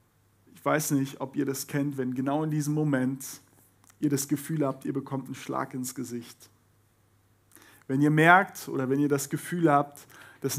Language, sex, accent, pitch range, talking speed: German, male, German, 125-150 Hz, 180 wpm